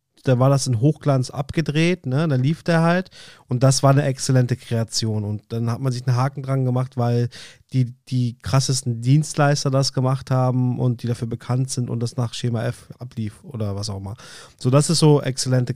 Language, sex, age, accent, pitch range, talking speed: German, male, 30-49, German, 125-145 Hz, 205 wpm